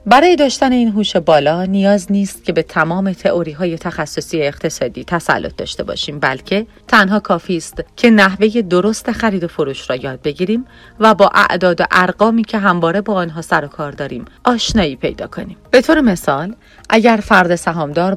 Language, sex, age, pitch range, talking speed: Persian, female, 30-49, 160-210 Hz, 170 wpm